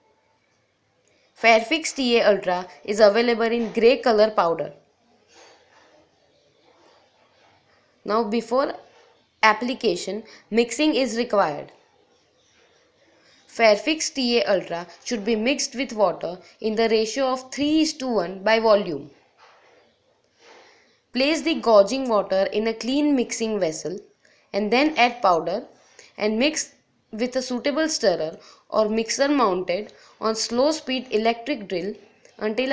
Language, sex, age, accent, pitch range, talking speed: English, female, 20-39, Indian, 210-265 Hz, 105 wpm